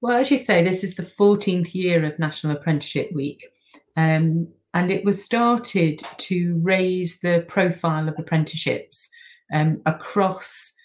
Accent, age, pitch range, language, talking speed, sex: British, 40-59, 160-195 Hz, English, 145 wpm, female